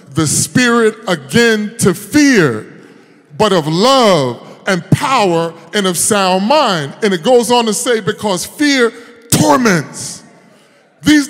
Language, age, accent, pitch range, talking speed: English, 30-49, American, 205-290 Hz, 125 wpm